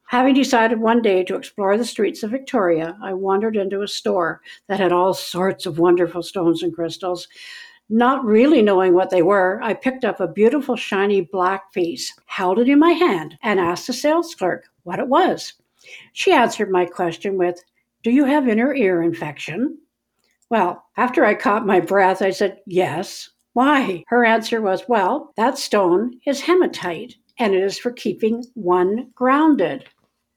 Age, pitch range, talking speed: 60-79, 180-240 Hz, 170 wpm